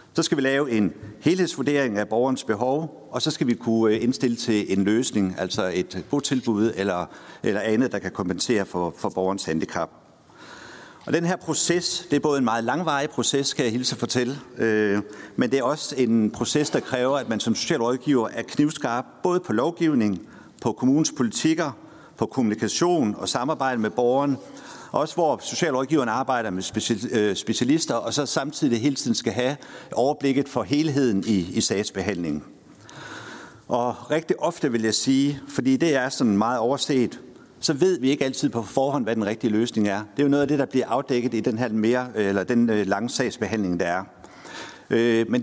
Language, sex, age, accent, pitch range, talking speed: Danish, male, 60-79, native, 110-145 Hz, 185 wpm